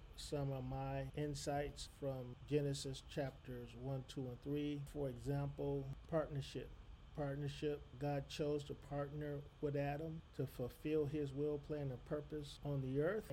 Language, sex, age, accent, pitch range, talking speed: English, male, 40-59, American, 135-150 Hz, 140 wpm